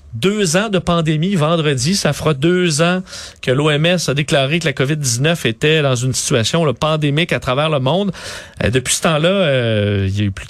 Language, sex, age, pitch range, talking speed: French, male, 40-59, 135-185 Hz, 190 wpm